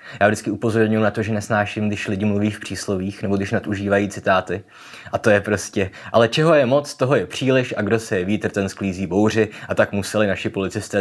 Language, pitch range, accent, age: Czech, 100-115 Hz, native, 20-39